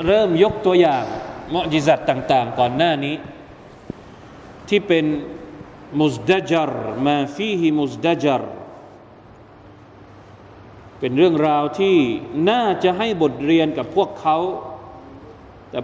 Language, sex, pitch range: Thai, male, 125-160 Hz